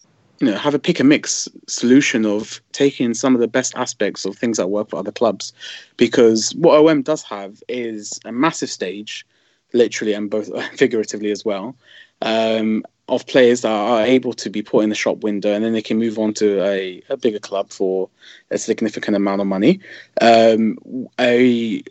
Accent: British